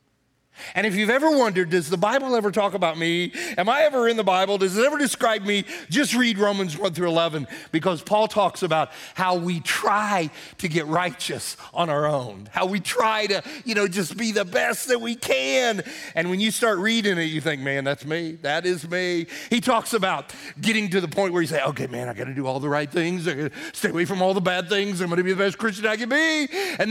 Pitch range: 175-245 Hz